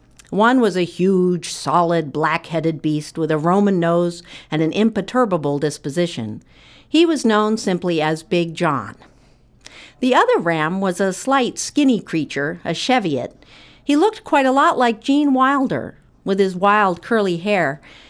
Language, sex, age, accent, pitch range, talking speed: English, female, 50-69, American, 150-210 Hz, 150 wpm